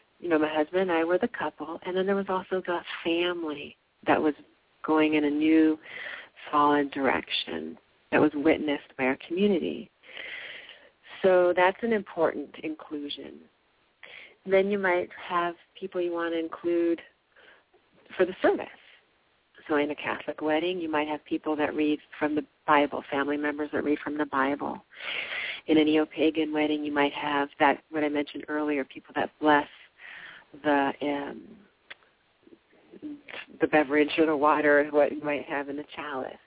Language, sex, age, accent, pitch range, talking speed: English, female, 40-59, American, 145-165 Hz, 160 wpm